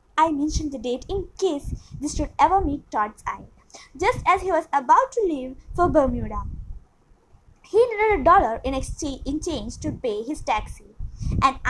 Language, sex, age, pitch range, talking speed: Malayalam, female, 20-39, 270-400 Hz, 165 wpm